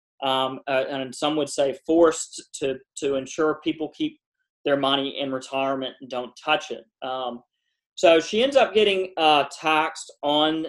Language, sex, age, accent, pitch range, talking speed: English, male, 40-59, American, 145-180 Hz, 165 wpm